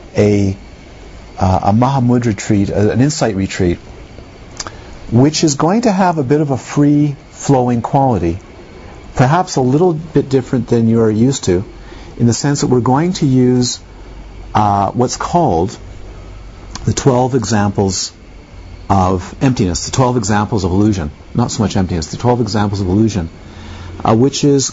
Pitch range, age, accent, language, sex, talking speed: 95-130 Hz, 50-69, American, English, male, 150 wpm